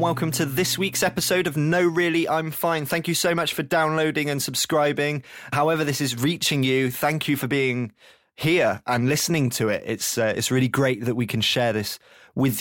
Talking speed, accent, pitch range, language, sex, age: 205 wpm, British, 120-155 Hz, English, male, 20-39